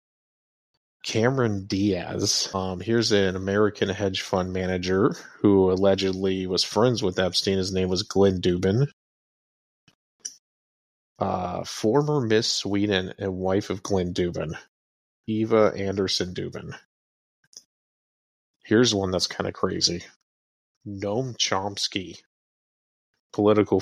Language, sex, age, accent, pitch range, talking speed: English, male, 30-49, American, 95-105 Hz, 105 wpm